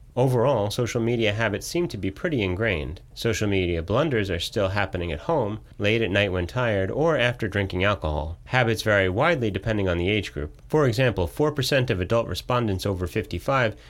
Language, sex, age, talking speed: English, male, 30-49, 180 wpm